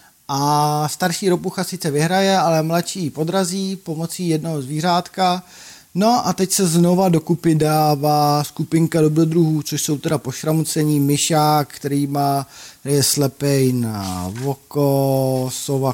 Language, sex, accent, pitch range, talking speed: Czech, male, native, 125-155 Hz, 115 wpm